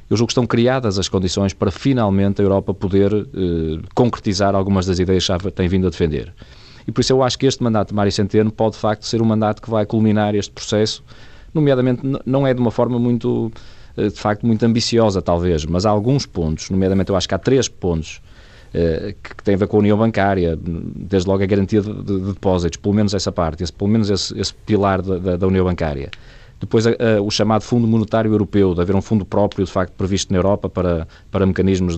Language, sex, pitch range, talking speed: Portuguese, male, 95-115 Hz, 220 wpm